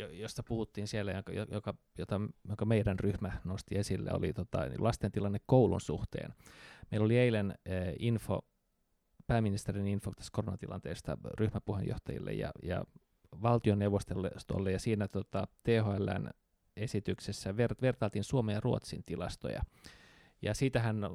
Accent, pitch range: native, 100-120 Hz